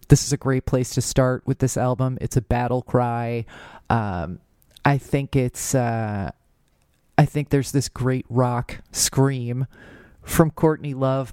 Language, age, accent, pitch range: English, 30-49, American, 120-140 Hz